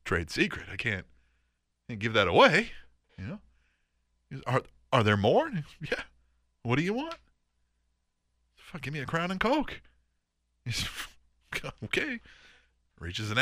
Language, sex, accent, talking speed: English, male, American, 150 wpm